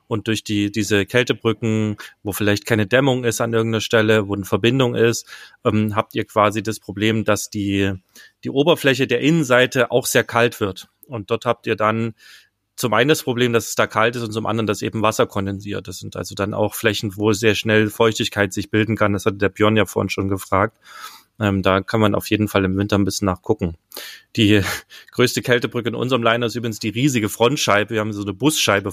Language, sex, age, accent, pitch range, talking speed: German, male, 30-49, German, 100-115 Hz, 215 wpm